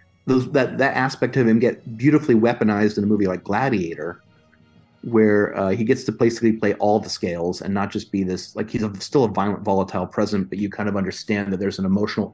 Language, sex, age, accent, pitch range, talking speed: English, male, 30-49, American, 95-115 Hz, 225 wpm